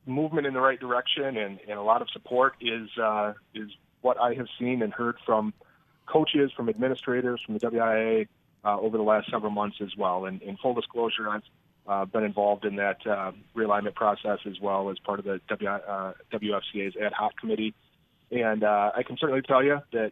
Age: 30-49